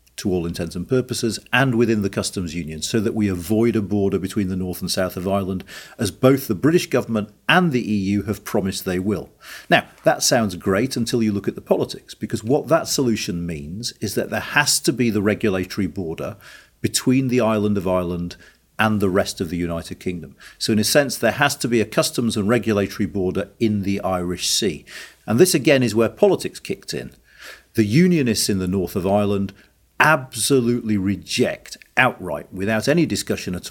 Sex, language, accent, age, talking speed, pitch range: male, English, British, 50-69, 195 wpm, 95-120 Hz